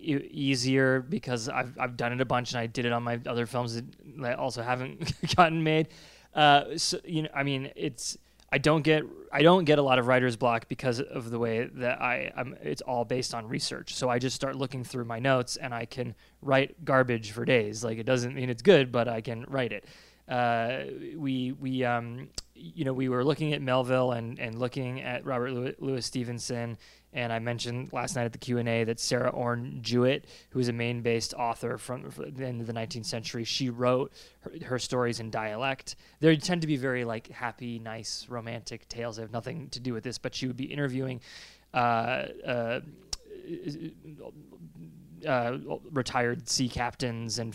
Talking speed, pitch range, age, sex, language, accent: 200 wpm, 120-135 Hz, 20-39, male, English, American